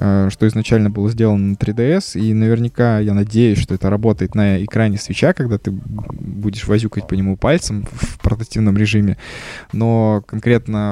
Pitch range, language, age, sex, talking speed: 100-120 Hz, Russian, 20-39, male, 155 wpm